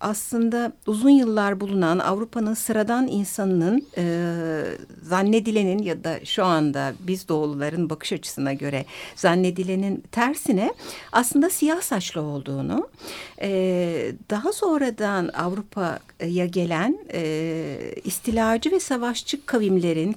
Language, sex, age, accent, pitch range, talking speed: Turkish, female, 60-79, native, 170-250 Hz, 100 wpm